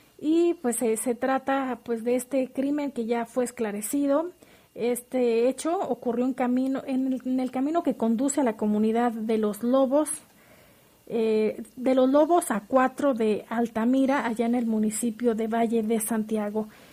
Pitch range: 235-275 Hz